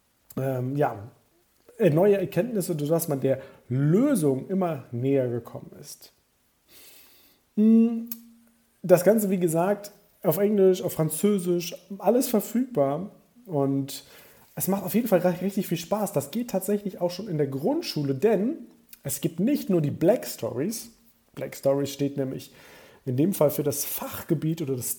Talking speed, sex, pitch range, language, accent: 140 wpm, male, 140-200 Hz, German, German